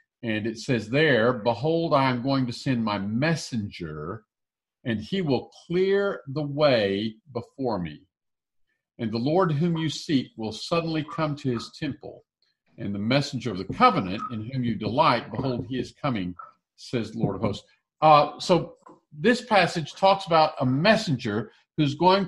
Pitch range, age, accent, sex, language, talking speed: 120-160 Hz, 50-69, American, male, English, 165 wpm